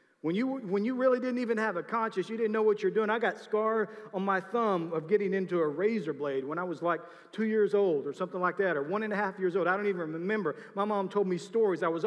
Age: 40-59